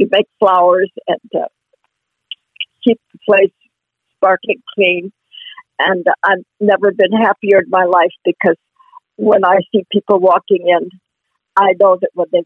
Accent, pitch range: American, 190-260 Hz